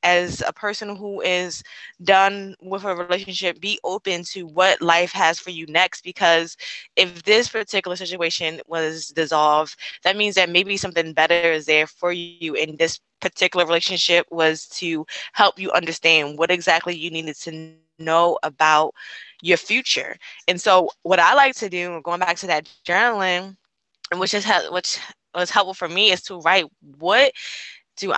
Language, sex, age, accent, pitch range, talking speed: English, female, 20-39, American, 170-230 Hz, 165 wpm